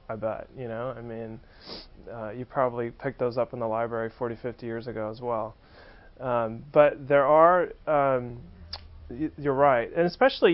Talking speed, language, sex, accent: 170 wpm, English, male, American